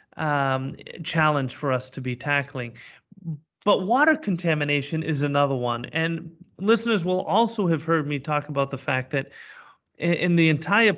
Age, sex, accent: 30-49, male, American